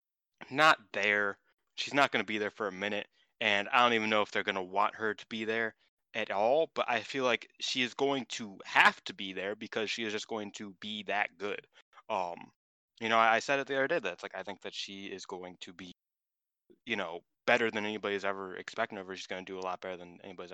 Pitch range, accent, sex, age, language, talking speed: 95-115 Hz, American, male, 20-39, English, 245 wpm